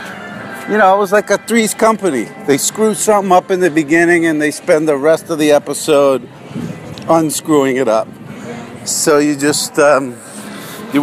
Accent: American